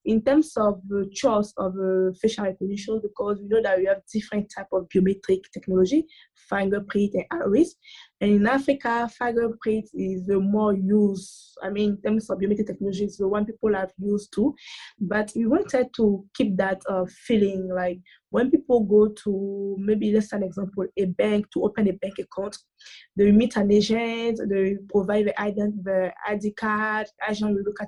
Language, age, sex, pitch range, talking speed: English, 20-39, female, 195-215 Hz, 185 wpm